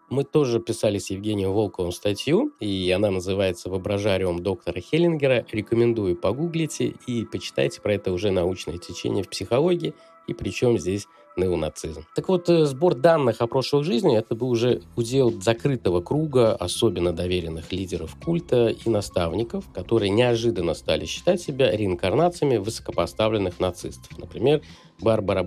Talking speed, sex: 135 wpm, male